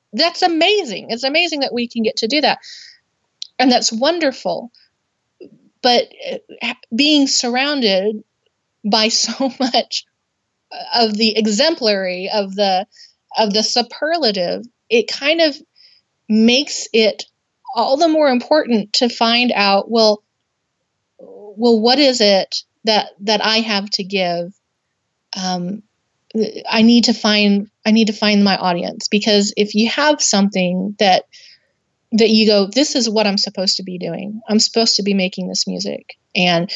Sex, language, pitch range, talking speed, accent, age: female, English, 200-245 Hz, 140 wpm, American, 30-49